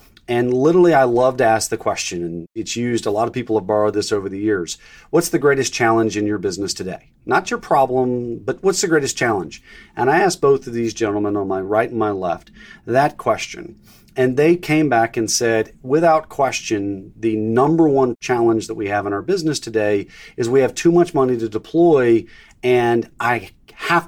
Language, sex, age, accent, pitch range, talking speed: English, male, 40-59, American, 115-160 Hz, 205 wpm